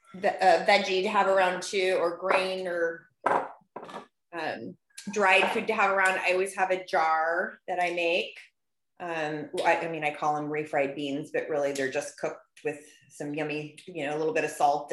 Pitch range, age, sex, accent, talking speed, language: 160-195 Hz, 20-39, female, American, 195 wpm, English